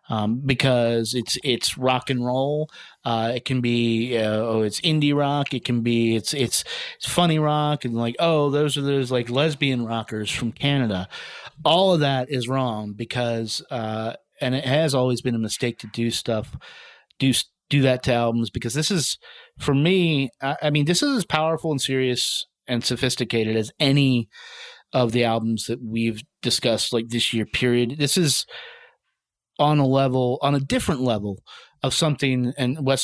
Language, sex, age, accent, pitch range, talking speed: English, male, 30-49, American, 115-150 Hz, 180 wpm